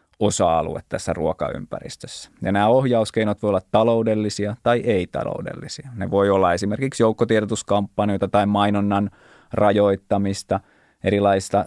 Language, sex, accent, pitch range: Finnish, male, native, 95-115 Hz